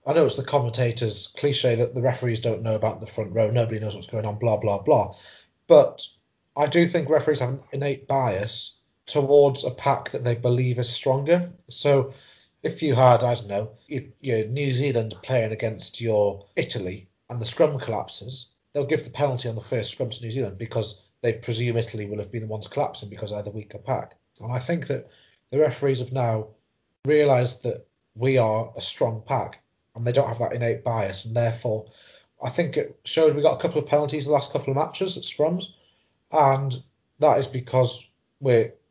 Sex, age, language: male, 30-49, English